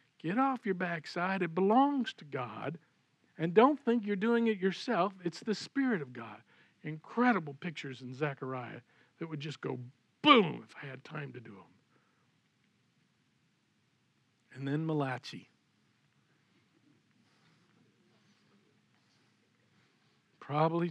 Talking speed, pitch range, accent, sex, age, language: 115 wpm, 140-170 Hz, American, male, 50-69, English